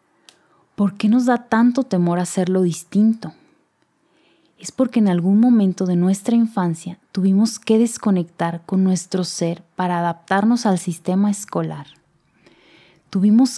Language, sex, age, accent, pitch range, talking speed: Spanish, female, 20-39, Mexican, 175-205 Hz, 125 wpm